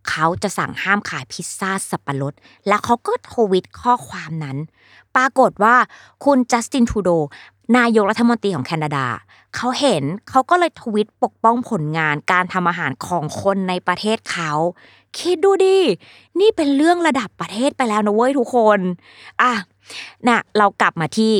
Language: Thai